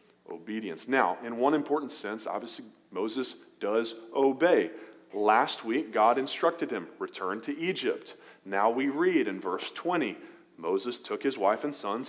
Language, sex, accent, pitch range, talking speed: English, male, American, 115-195 Hz, 150 wpm